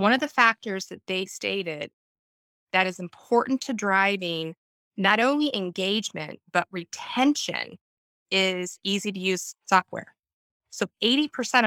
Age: 20-39